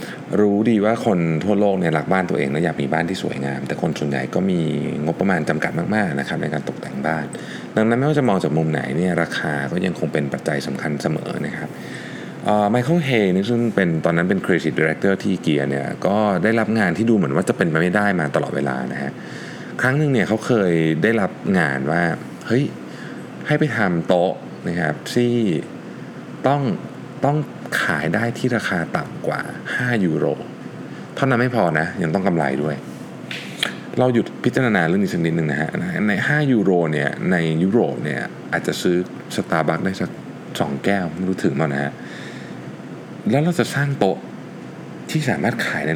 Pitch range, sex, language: 80-120 Hz, male, Thai